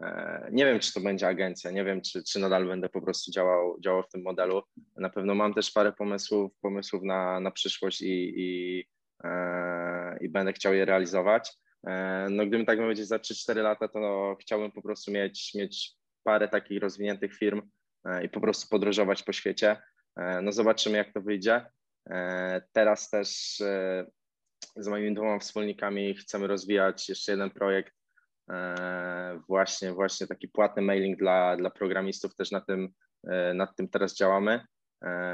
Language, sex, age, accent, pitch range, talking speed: Polish, male, 20-39, native, 95-105 Hz, 160 wpm